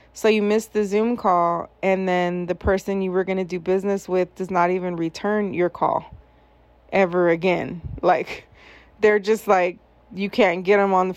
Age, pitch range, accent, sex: 20-39, 180-215 Hz, American, female